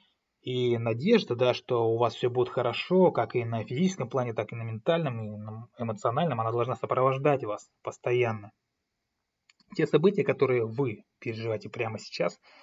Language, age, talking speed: Russian, 20-39, 155 wpm